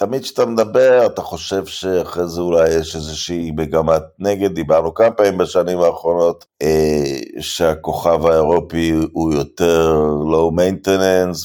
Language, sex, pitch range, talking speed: Hebrew, male, 80-105 Hz, 125 wpm